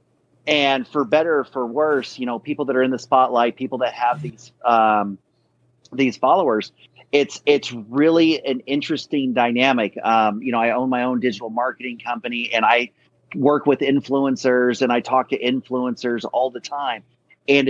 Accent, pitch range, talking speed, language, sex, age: American, 120-135 Hz, 175 wpm, English, male, 30-49